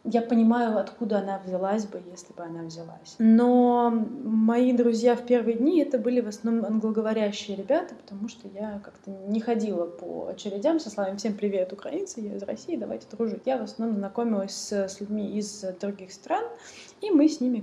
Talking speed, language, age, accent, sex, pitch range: 185 wpm, Russian, 20-39, native, female, 195-230 Hz